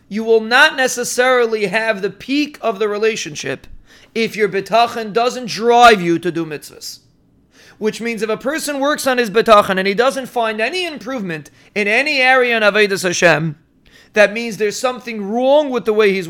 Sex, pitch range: male, 210-255 Hz